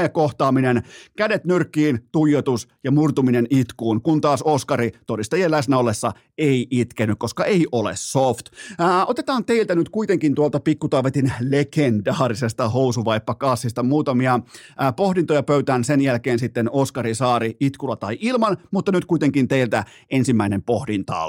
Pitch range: 130-170 Hz